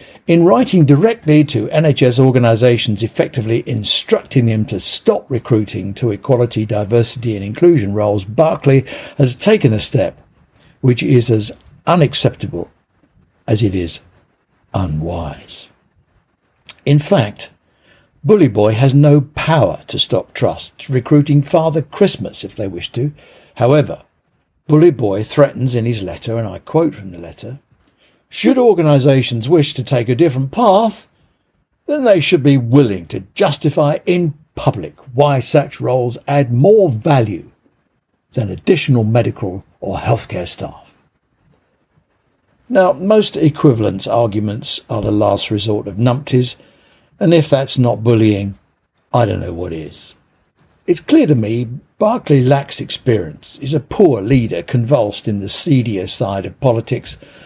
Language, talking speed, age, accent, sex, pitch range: English, 135 wpm, 60-79, British, male, 110-150 Hz